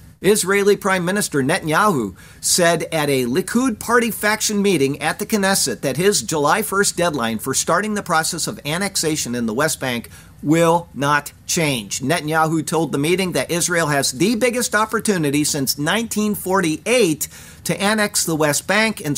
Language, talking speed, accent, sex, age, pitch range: English, 155 wpm, American, male, 50-69, 135-185 Hz